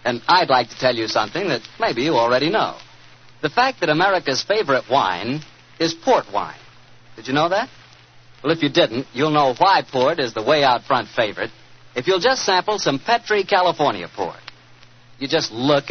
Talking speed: 190 wpm